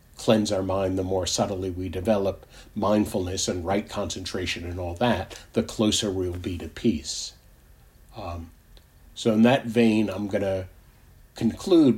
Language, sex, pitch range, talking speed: English, male, 80-115 Hz, 150 wpm